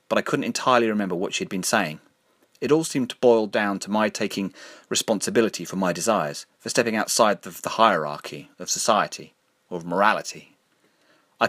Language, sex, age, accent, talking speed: English, male, 30-49, British, 180 wpm